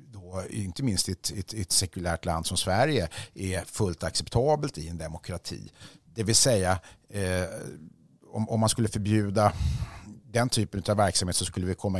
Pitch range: 90-120 Hz